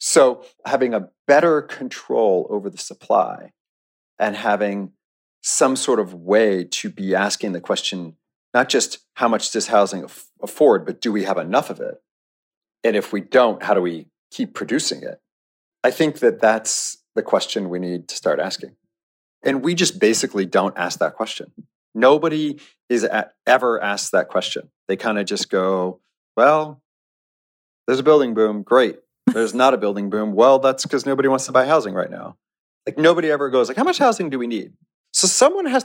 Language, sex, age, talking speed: English, male, 40-59, 180 wpm